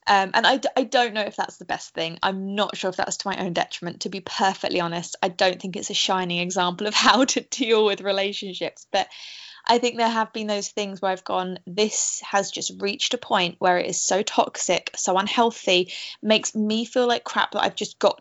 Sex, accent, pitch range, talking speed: female, British, 195-250 Hz, 230 wpm